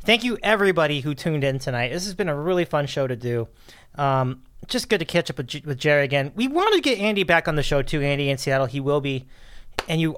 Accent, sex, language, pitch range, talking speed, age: American, male, English, 140-185 Hz, 255 wpm, 30-49